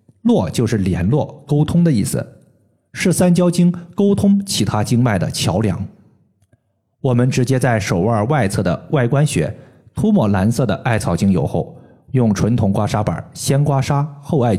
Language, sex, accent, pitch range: Chinese, male, native, 110-150 Hz